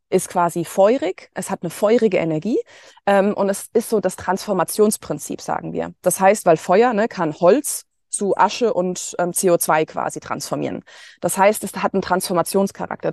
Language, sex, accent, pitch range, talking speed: German, female, German, 180-225 Hz, 165 wpm